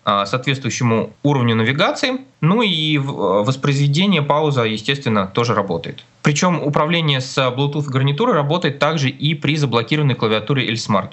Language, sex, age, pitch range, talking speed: Russian, male, 20-39, 120-155 Hz, 120 wpm